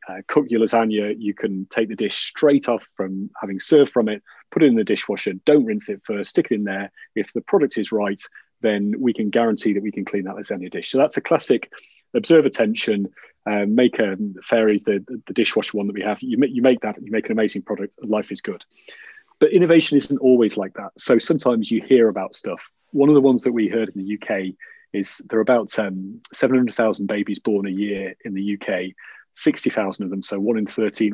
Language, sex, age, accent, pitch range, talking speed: English, male, 30-49, British, 100-125 Hz, 230 wpm